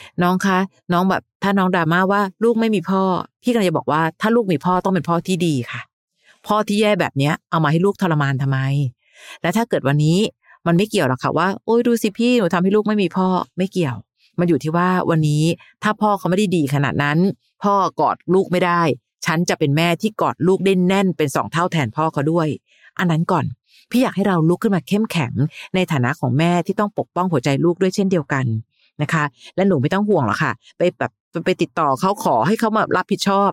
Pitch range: 155-190 Hz